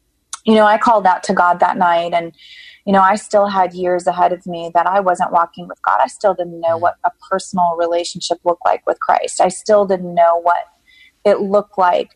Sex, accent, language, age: female, American, English, 30-49